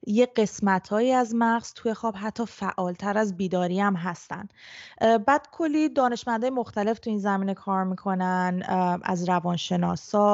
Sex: female